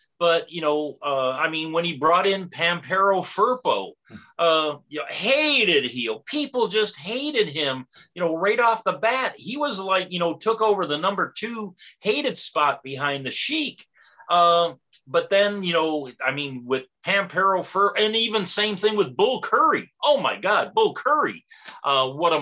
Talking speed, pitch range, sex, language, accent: 180 wpm, 145-215 Hz, male, English, American